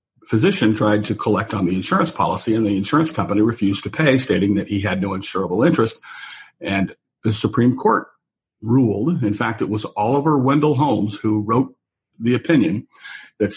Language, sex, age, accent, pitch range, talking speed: English, male, 50-69, American, 105-140 Hz, 175 wpm